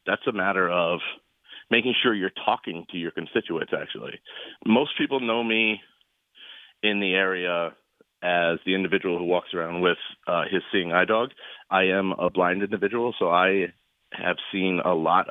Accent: American